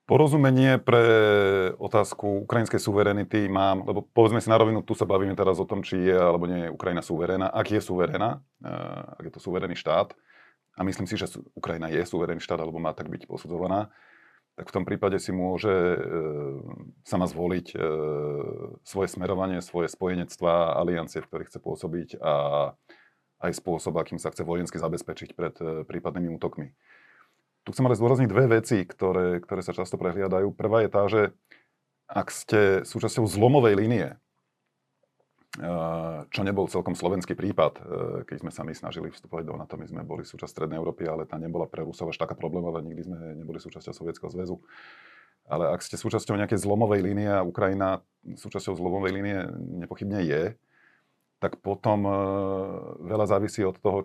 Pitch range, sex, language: 85-105 Hz, male, Slovak